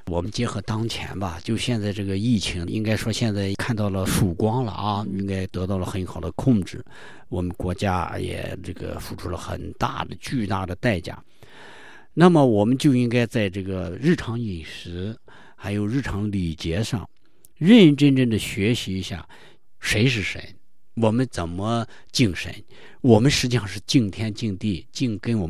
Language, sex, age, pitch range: Chinese, male, 50-69, 95-125 Hz